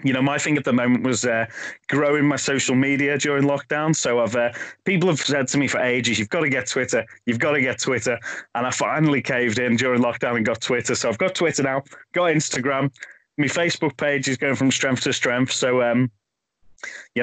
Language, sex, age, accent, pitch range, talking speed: English, male, 20-39, British, 120-140 Hz, 225 wpm